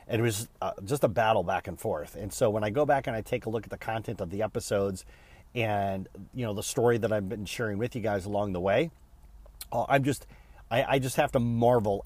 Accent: American